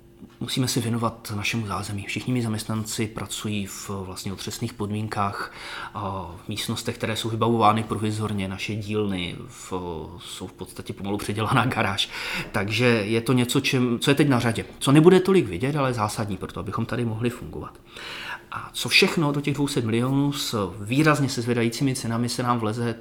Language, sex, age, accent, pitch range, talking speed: Czech, male, 30-49, native, 105-135 Hz, 170 wpm